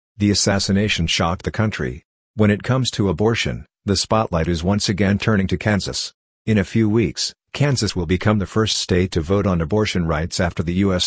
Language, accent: English, American